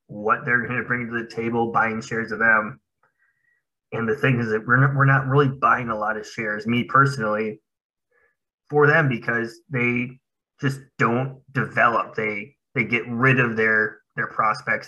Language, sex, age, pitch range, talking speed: English, male, 20-39, 115-135 Hz, 180 wpm